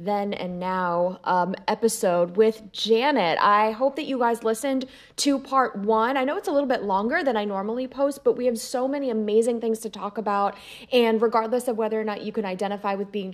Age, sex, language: 20-39, female, English